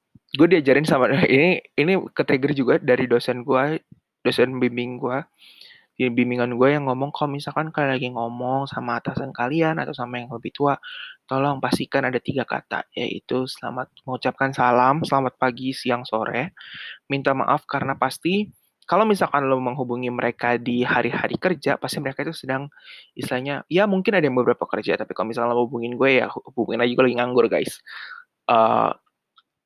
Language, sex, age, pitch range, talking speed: Indonesian, male, 20-39, 125-140 Hz, 155 wpm